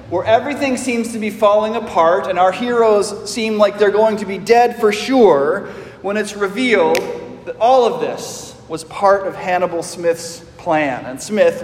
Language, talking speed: English, 175 wpm